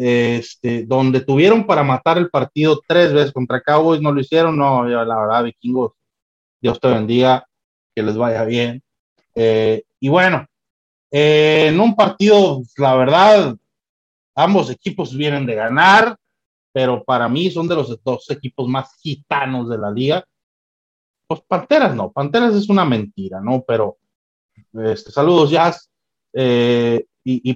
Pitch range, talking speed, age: 120-165 Hz, 145 wpm, 30-49